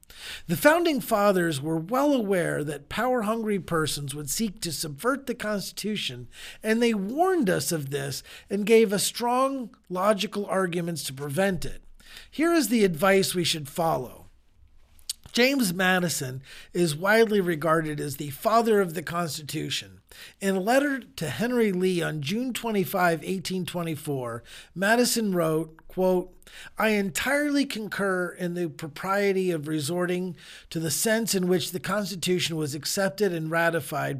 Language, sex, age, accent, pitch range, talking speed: English, male, 40-59, American, 160-220 Hz, 140 wpm